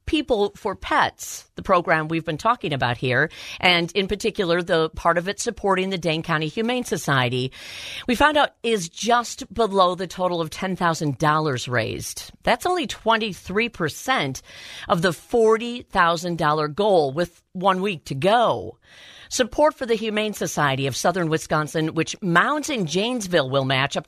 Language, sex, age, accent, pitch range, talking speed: English, female, 50-69, American, 150-215 Hz, 165 wpm